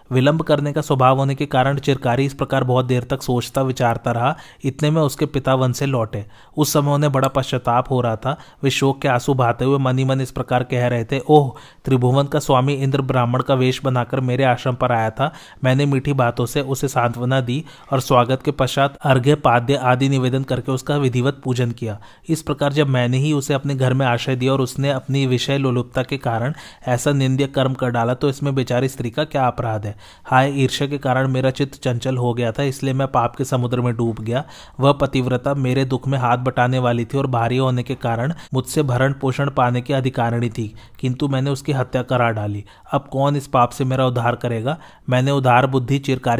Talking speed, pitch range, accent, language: 165 wpm, 125-140 Hz, native, Hindi